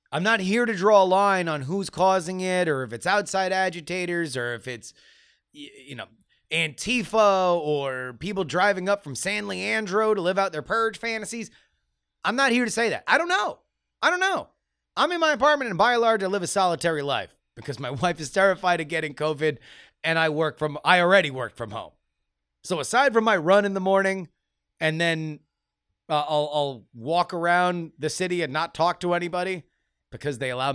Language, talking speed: English, 200 wpm